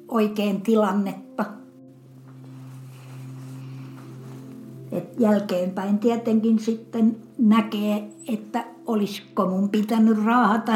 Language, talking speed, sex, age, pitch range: Finnish, 65 wpm, female, 60-79, 190-235 Hz